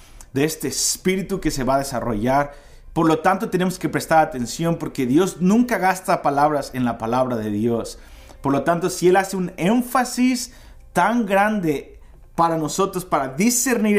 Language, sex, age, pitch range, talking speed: Spanish, male, 30-49, 125-175 Hz, 165 wpm